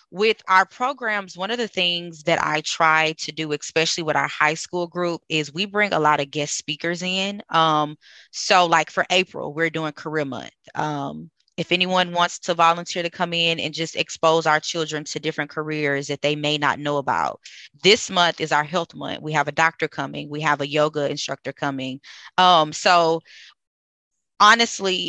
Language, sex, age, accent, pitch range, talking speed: English, female, 20-39, American, 150-175 Hz, 190 wpm